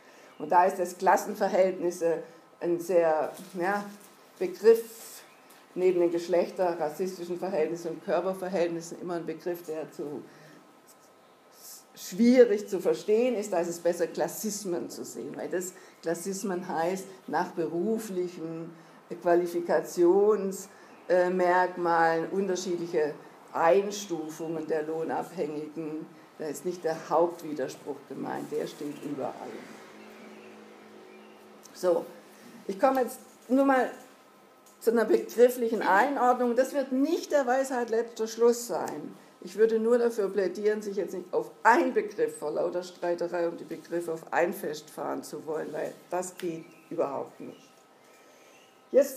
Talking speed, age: 120 wpm, 50-69